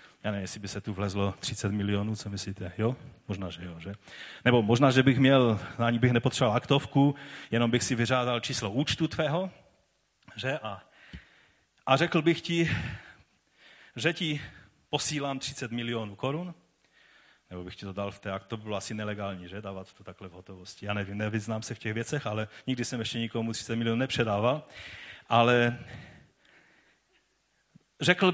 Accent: native